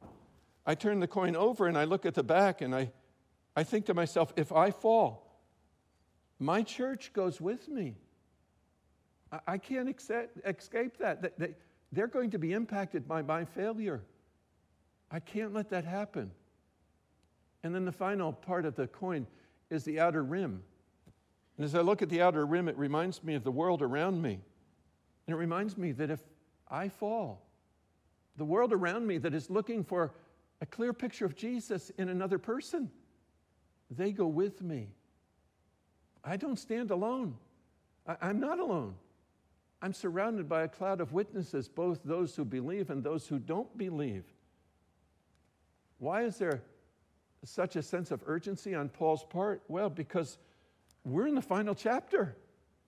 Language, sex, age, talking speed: English, male, 60-79, 160 wpm